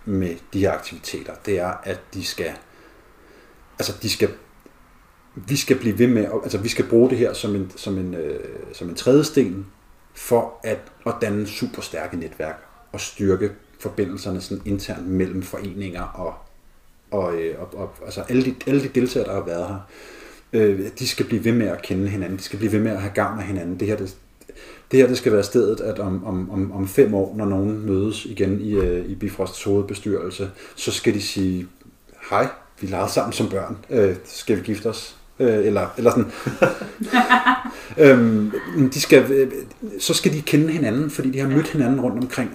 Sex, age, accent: male, 30-49, native